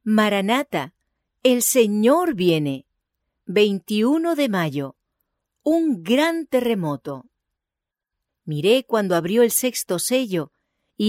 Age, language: 40-59, English